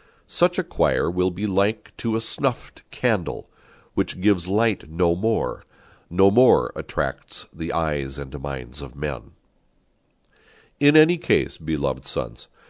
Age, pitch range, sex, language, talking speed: 60-79, 80-115 Hz, male, English, 135 wpm